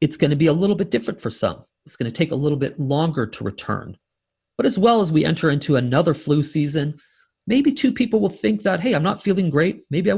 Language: English